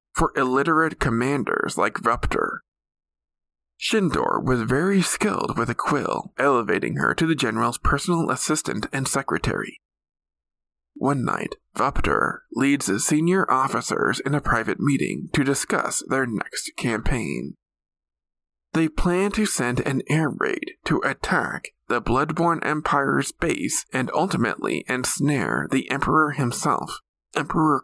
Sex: male